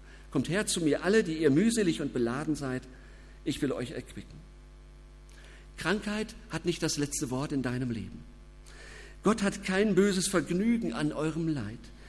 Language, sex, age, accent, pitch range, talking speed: German, male, 50-69, German, 135-185 Hz, 160 wpm